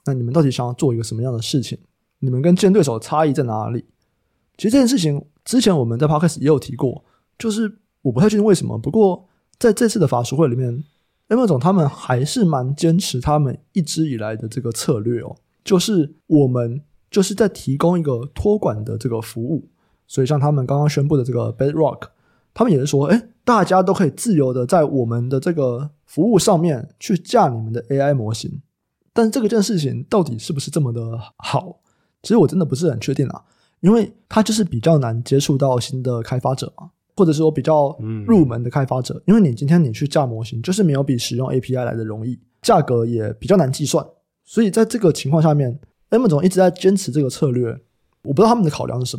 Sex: male